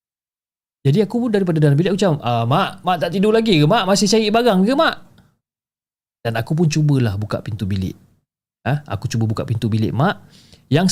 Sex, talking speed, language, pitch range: male, 185 wpm, Malay, 115-160 Hz